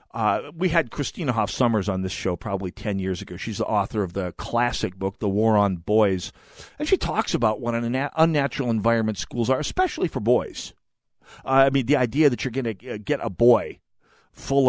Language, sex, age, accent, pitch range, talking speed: English, male, 40-59, American, 105-145 Hz, 205 wpm